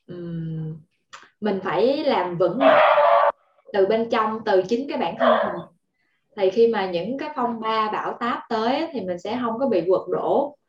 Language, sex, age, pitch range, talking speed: Vietnamese, female, 10-29, 185-270 Hz, 185 wpm